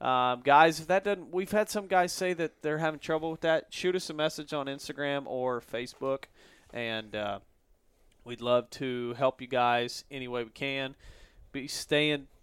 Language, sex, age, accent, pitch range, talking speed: English, male, 30-49, American, 125-170 Hz, 185 wpm